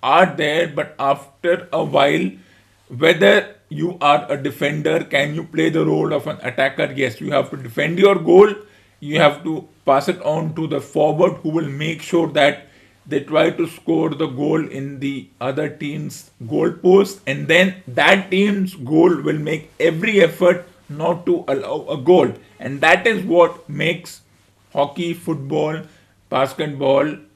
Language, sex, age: English, male, 50-69